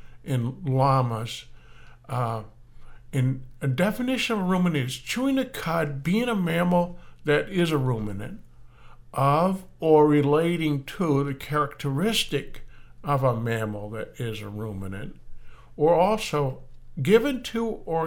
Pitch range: 125-175 Hz